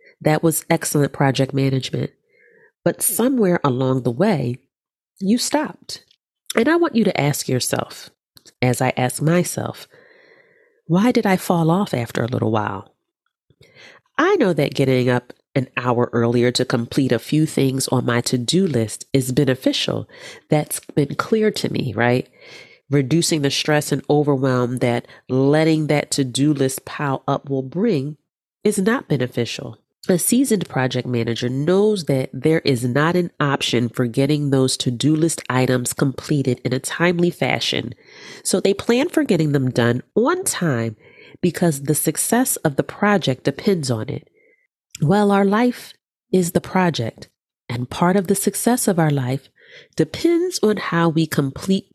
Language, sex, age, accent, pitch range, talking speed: English, female, 40-59, American, 130-205 Hz, 155 wpm